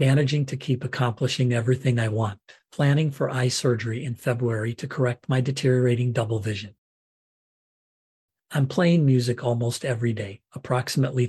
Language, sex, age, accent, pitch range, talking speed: English, male, 40-59, American, 120-130 Hz, 140 wpm